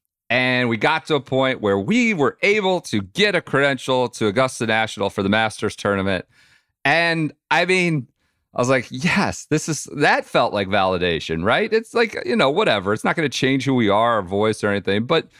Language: English